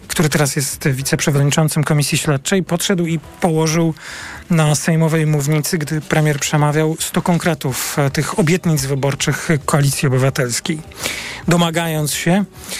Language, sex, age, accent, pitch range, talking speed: Polish, male, 40-59, native, 145-170 Hz, 115 wpm